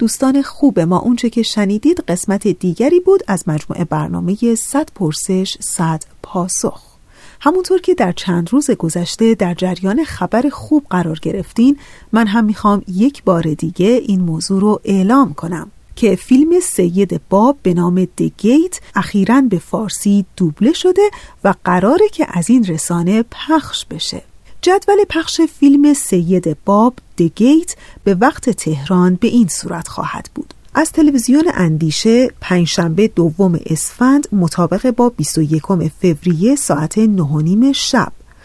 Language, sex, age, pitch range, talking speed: Persian, female, 40-59, 175-255 Hz, 135 wpm